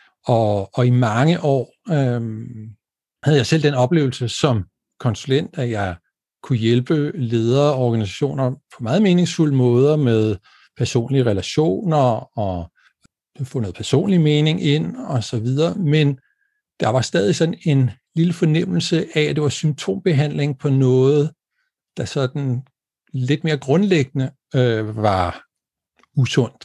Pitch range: 120-155 Hz